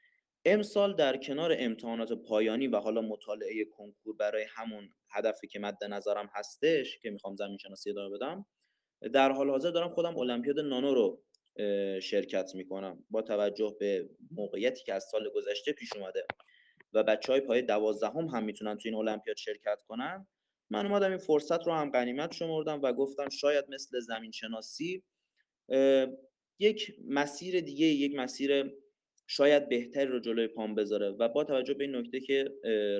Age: 30-49